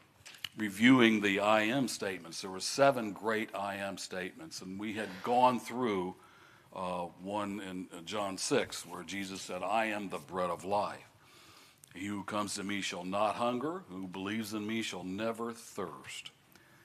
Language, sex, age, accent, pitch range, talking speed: English, male, 60-79, American, 90-110 Hz, 165 wpm